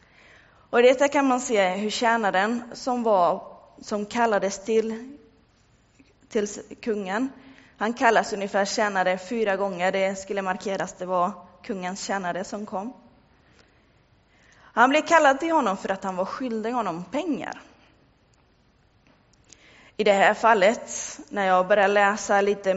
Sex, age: female, 20-39